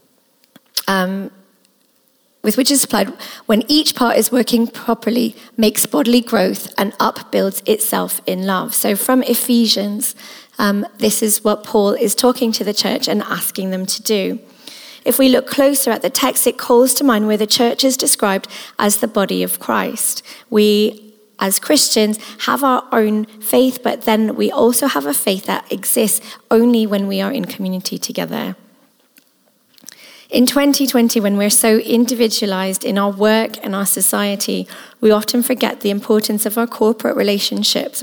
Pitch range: 200-250 Hz